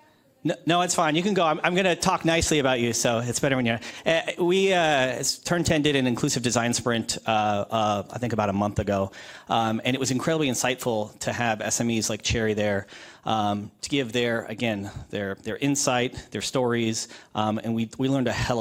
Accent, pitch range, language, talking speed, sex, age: American, 110-145 Hz, English, 215 wpm, male, 30-49